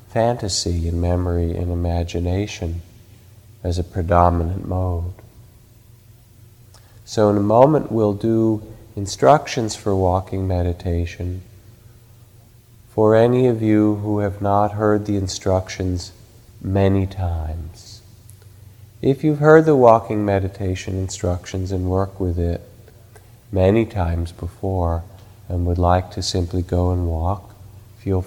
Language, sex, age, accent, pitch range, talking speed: English, male, 40-59, American, 90-110 Hz, 115 wpm